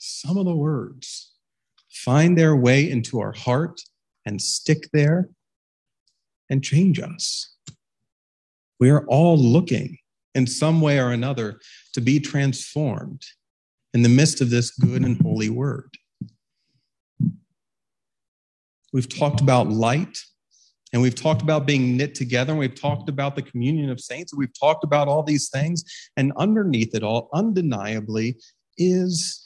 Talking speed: 140 wpm